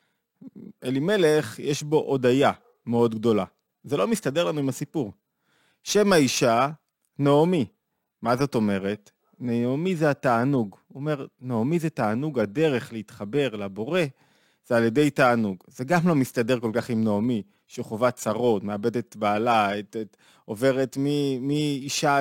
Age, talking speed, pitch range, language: 20-39, 130 wpm, 120-155 Hz, Hebrew